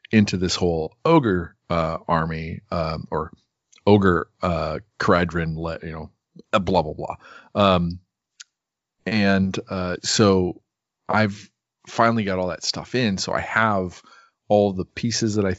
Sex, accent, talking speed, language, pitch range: male, American, 135 wpm, English, 90-105 Hz